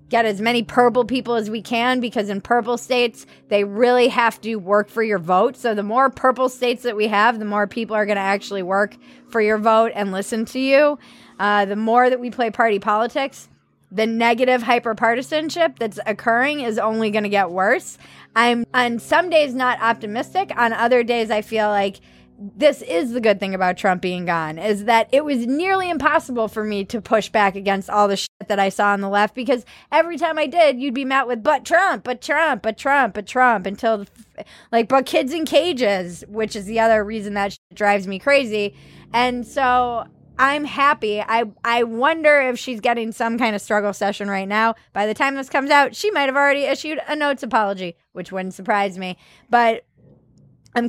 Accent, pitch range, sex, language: American, 205-255 Hz, female, English